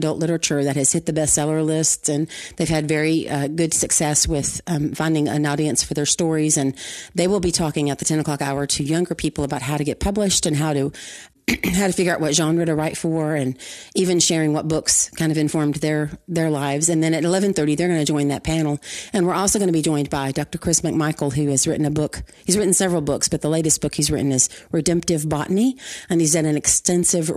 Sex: female